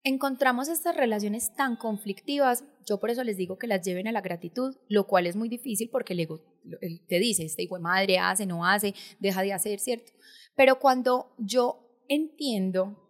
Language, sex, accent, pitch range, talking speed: Spanish, female, Colombian, 185-235 Hz, 195 wpm